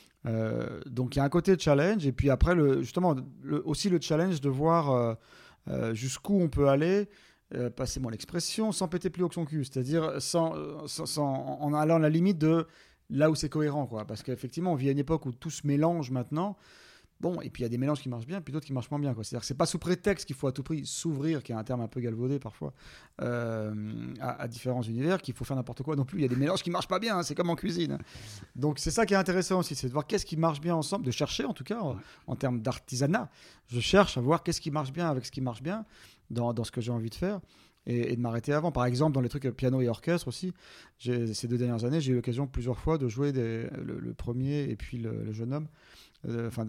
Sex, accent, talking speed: male, French, 270 wpm